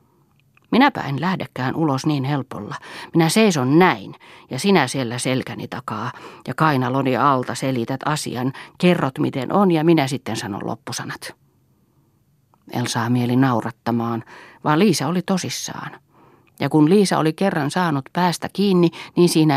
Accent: native